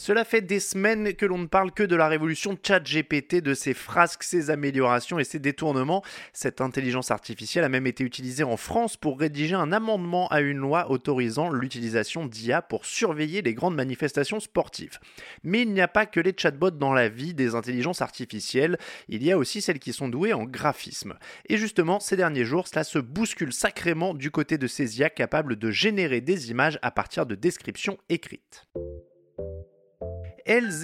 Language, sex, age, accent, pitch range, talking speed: French, male, 20-39, French, 125-195 Hz, 185 wpm